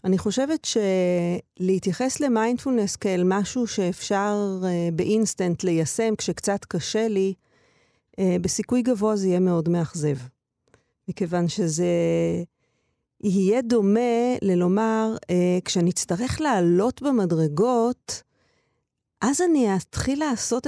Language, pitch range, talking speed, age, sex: Hebrew, 175-220 Hz, 95 wpm, 40-59, female